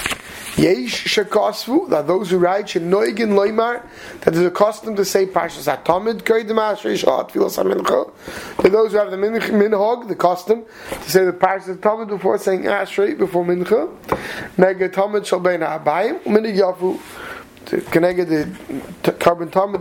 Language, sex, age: English, male, 30-49